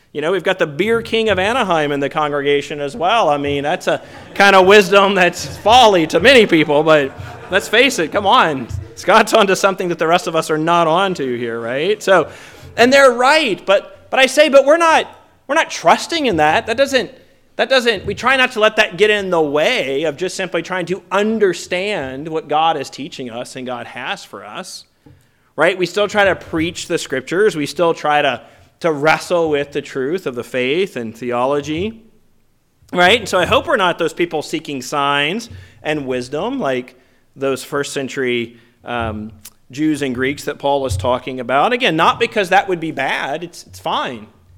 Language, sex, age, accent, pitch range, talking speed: English, male, 30-49, American, 130-190 Hz, 200 wpm